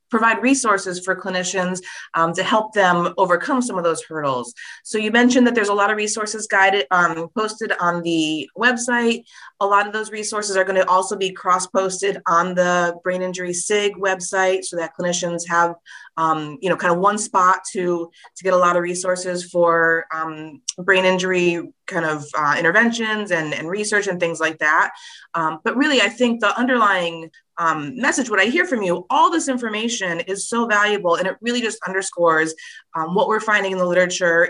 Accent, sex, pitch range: American, female, 165-210 Hz